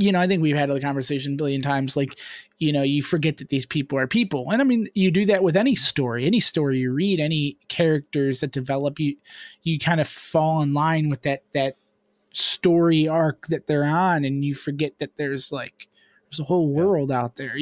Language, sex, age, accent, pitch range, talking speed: English, male, 20-39, American, 140-175 Hz, 220 wpm